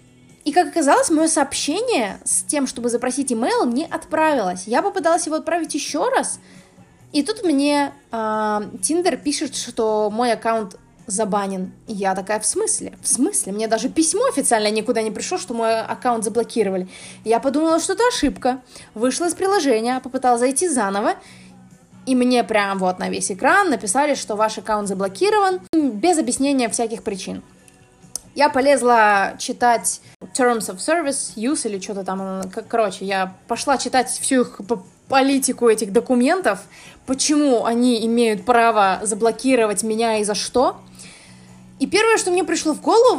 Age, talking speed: 20-39, 150 wpm